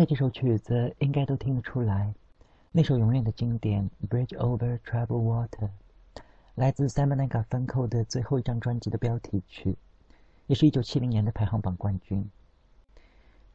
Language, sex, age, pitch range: Chinese, male, 50-69, 100-130 Hz